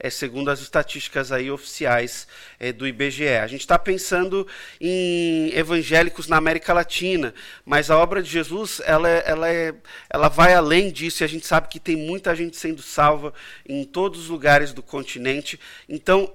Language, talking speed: Portuguese, 145 wpm